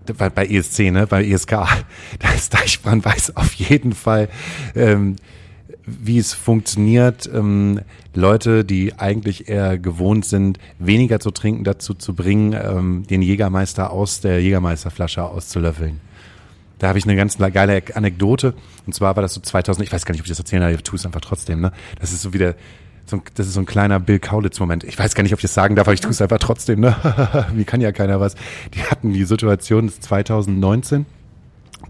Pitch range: 95-115 Hz